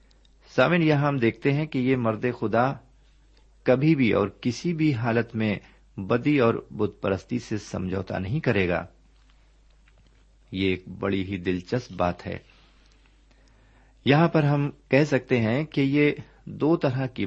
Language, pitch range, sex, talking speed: Urdu, 95-130 Hz, male, 150 wpm